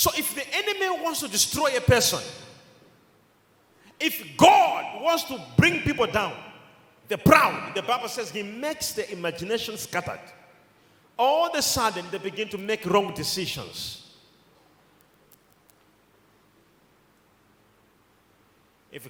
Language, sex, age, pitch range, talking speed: English, male, 40-59, 175-265 Hz, 115 wpm